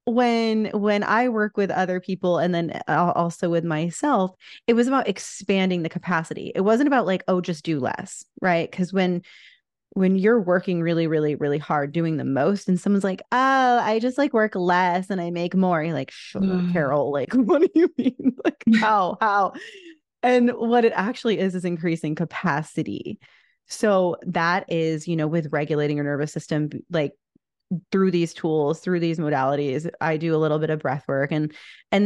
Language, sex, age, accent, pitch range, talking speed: English, female, 20-39, American, 155-205 Hz, 180 wpm